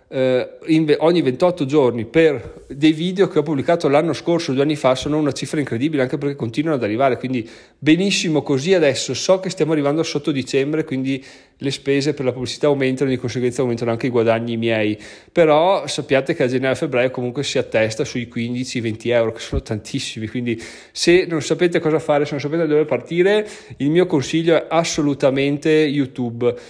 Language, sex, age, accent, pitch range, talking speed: Italian, male, 30-49, native, 125-155 Hz, 190 wpm